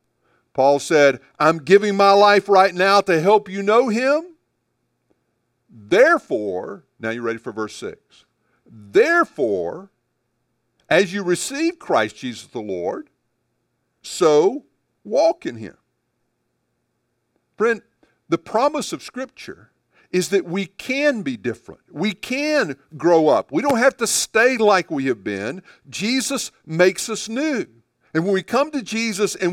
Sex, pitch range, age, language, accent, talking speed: male, 140-225 Hz, 50-69, English, American, 135 wpm